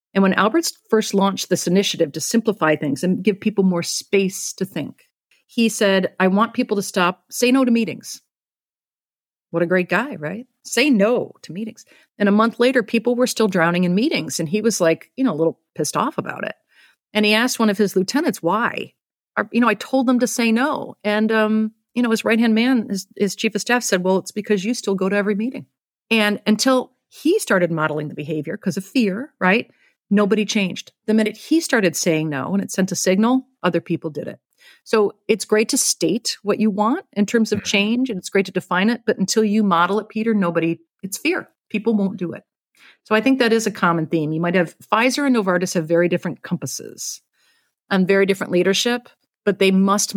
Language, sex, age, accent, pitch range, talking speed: English, female, 40-59, American, 175-225 Hz, 215 wpm